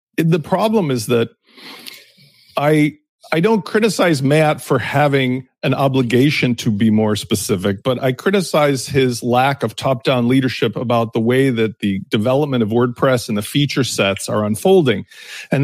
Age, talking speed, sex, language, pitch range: 40-59, 155 wpm, male, English, 125-160 Hz